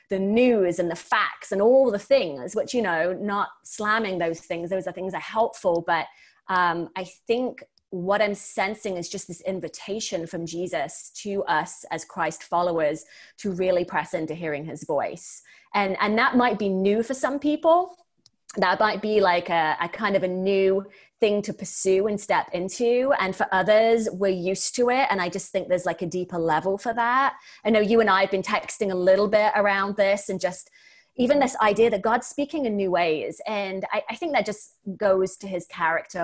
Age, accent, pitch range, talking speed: 20-39, British, 175-215 Hz, 205 wpm